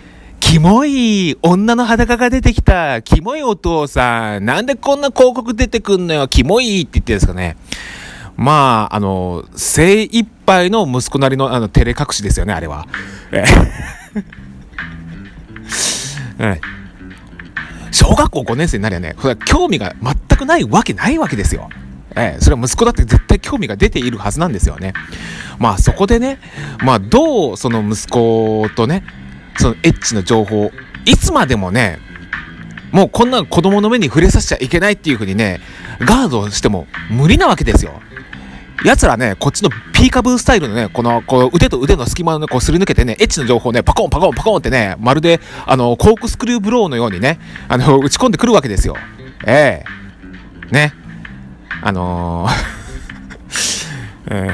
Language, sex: Japanese, male